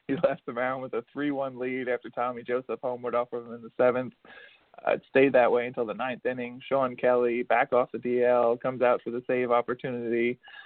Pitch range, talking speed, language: 125-135 Hz, 220 wpm, English